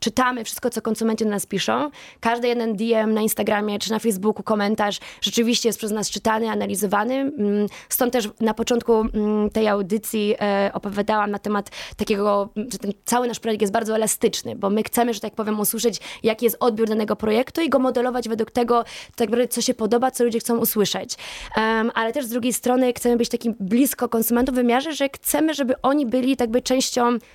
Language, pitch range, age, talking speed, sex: Polish, 215-245 Hz, 20-39, 180 wpm, female